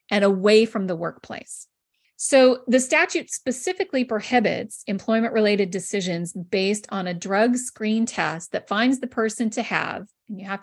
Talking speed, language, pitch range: 150 wpm, English, 190-245 Hz